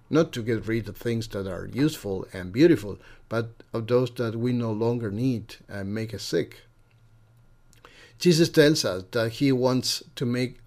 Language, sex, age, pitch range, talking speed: English, male, 50-69, 110-130 Hz, 175 wpm